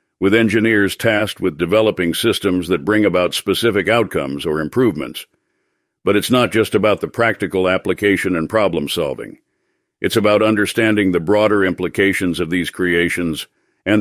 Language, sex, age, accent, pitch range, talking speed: English, male, 60-79, American, 95-115 Hz, 140 wpm